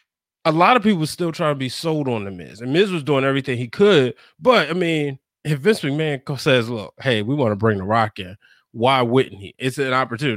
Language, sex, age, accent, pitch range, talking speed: English, male, 20-39, American, 125-170 Hz, 235 wpm